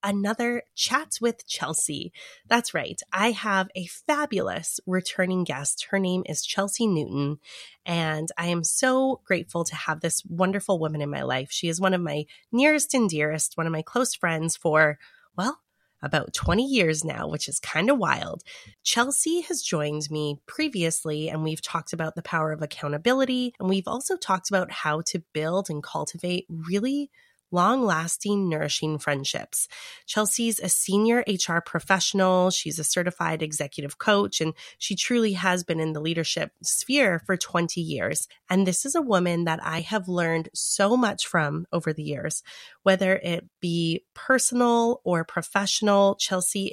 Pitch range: 160-225 Hz